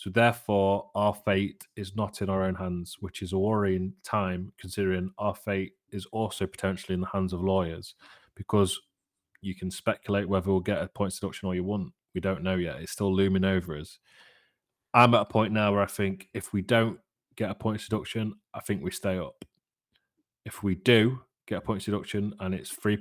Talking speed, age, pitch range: 210 wpm, 30-49, 95-105 Hz